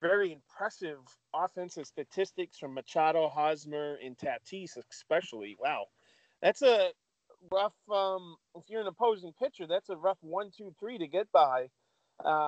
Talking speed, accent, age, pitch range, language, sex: 145 wpm, American, 40-59, 155-195 Hz, English, male